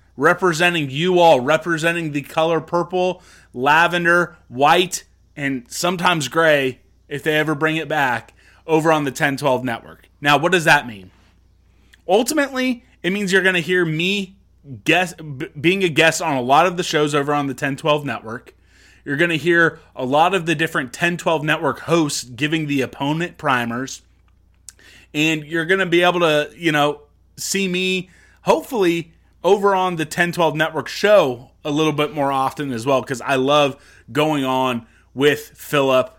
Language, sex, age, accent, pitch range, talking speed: English, male, 20-39, American, 130-170 Hz, 160 wpm